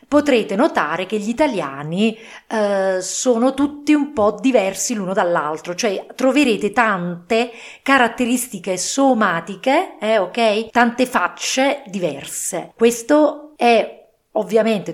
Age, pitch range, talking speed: 40-59, 180-240 Hz, 100 wpm